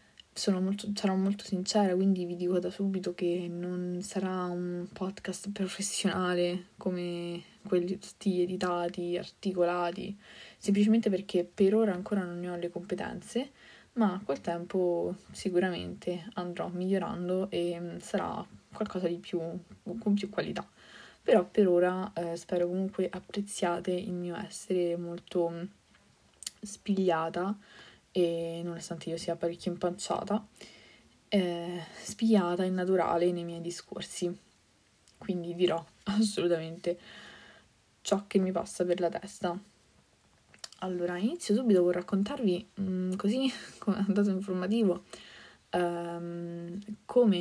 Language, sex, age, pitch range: Italian, female, 20-39, 175-200 Hz